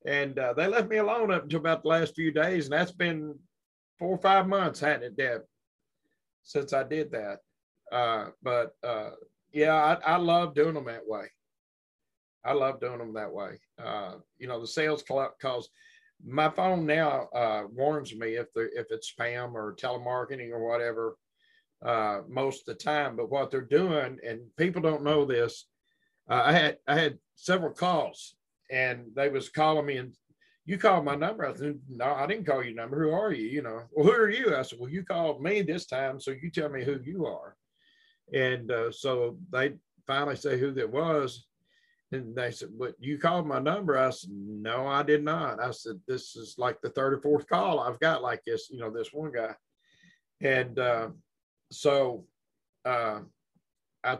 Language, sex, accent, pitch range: English, male, American, 125-165 Hz